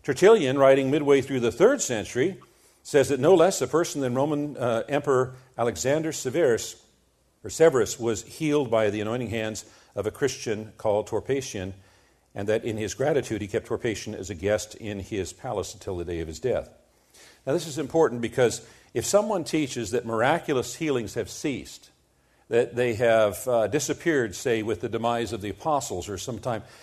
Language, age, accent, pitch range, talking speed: English, 50-69, American, 110-140 Hz, 175 wpm